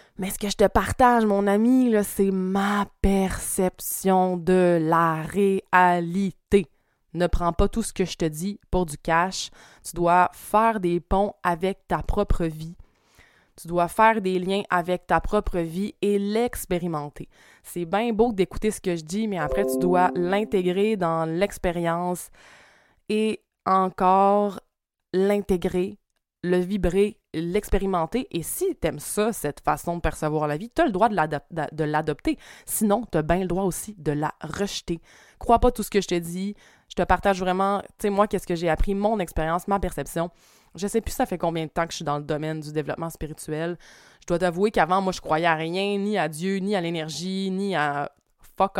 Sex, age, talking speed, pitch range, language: female, 20-39, 190 wpm, 165-200 Hz, French